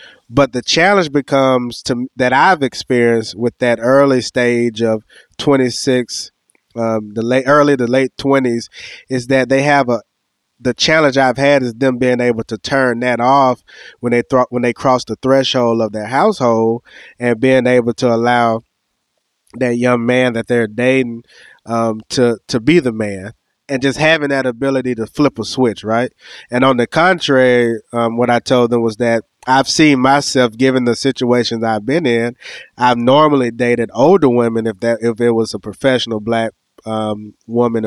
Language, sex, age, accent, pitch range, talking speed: English, male, 20-39, American, 115-130 Hz, 175 wpm